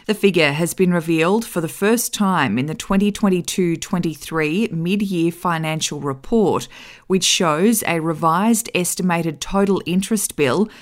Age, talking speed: 20-39, 130 wpm